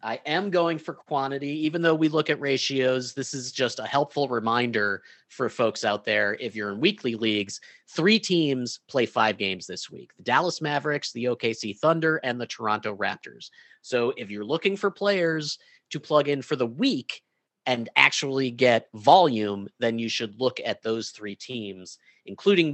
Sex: male